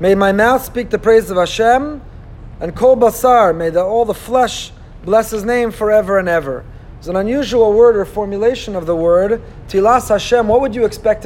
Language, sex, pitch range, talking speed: Hebrew, male, 200-265 Hz, 190 wpm